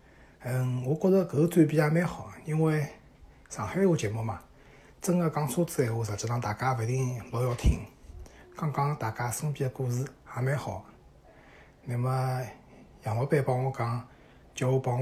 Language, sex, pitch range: Chinese, male, 115-140 Hz